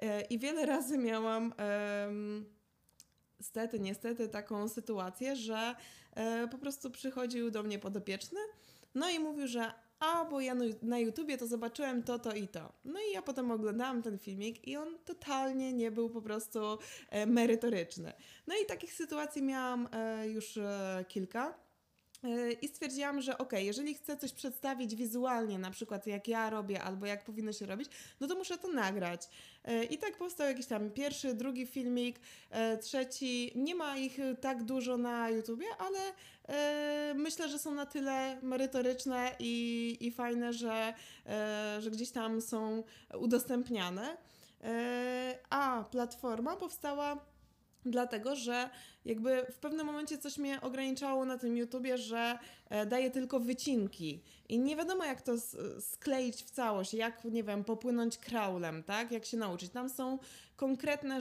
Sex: female